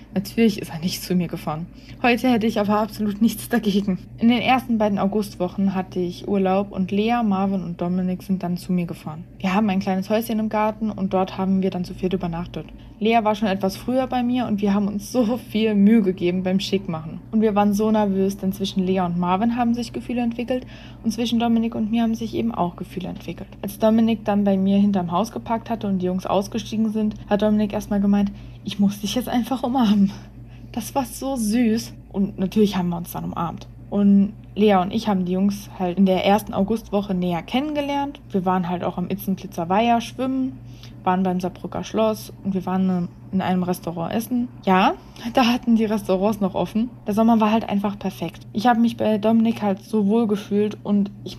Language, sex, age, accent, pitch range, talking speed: German, female, 20-39, German, 185-225 Hz, 210 wpm